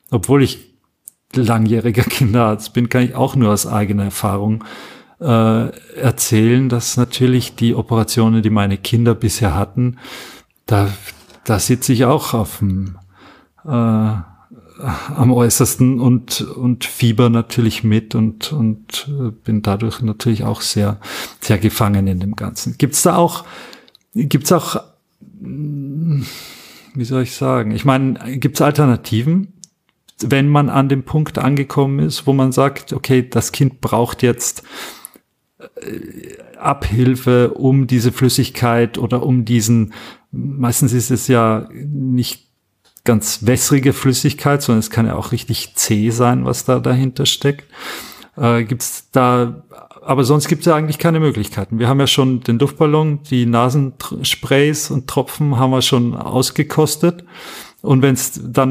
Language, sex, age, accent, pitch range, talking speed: German, male, 40-59, German, 115-140 Hz, 140 wpm